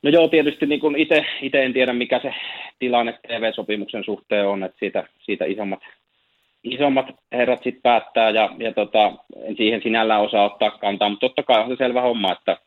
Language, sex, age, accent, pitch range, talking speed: Finnish, male, 30-49, native, 100-125 Hz, 175 wpm